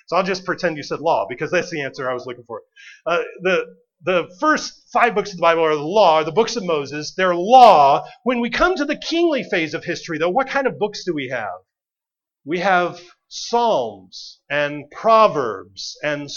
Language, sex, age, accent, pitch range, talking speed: English, male, 40-59, American, 165-260 Hz, 205 wpm